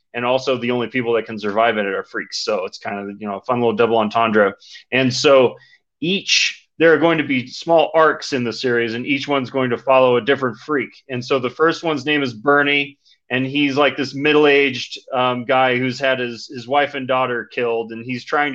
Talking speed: 225 wpm